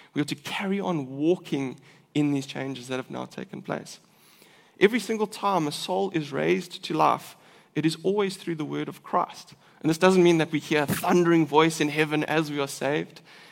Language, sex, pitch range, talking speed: English, male, 145-185 Hz, 210 wpm